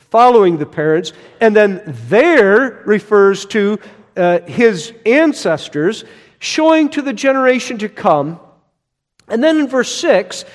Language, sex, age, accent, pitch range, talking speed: English, male, 50-69, American, 140-210 Hz, 125 wpm